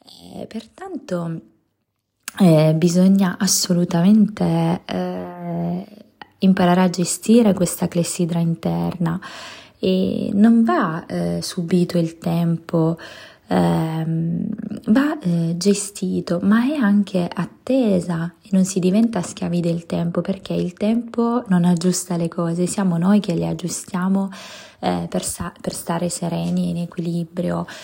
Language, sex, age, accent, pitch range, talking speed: Italian, female, 20-39, native, 170-195 Hz, 110 wpm